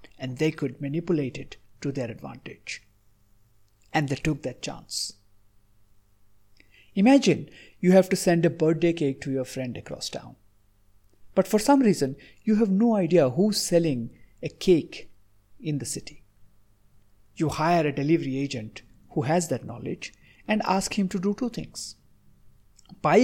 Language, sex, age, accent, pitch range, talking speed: English, male, 50-69, Indian, 100-170 Hz, 150 wpm